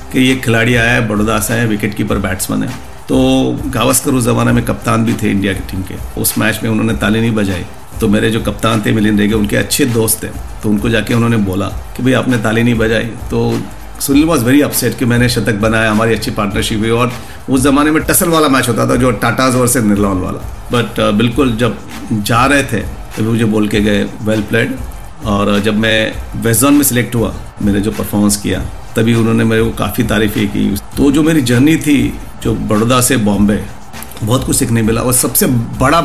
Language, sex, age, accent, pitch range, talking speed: Hindi, male, 50-69, native, 105-130 Hz, 210 wpm